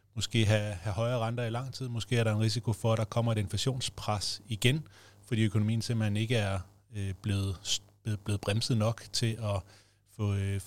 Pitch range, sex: 100-115 Hz, male